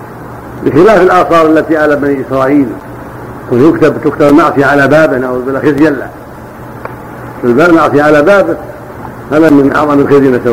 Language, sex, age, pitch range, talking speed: Arabic, male, 50-69, 140-165 Hz, 110 wpm